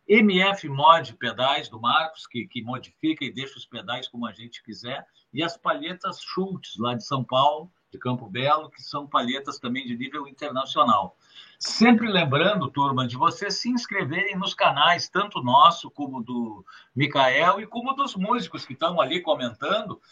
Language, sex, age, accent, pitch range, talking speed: Portuguese, male, 50-69, Brazilian, 135-190 Hz, 165 wpm